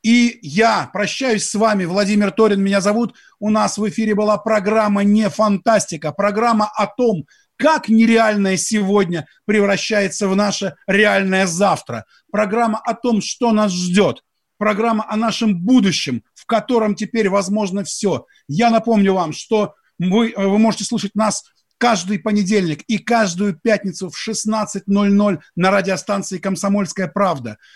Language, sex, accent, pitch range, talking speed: Russian, male, native, 190-225 Hz, 135 wpm